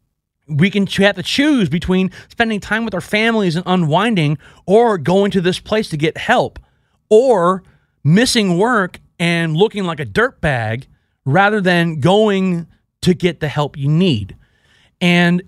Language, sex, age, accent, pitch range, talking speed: English, male, 30-49, American, 140-190 Hz, 155 wpm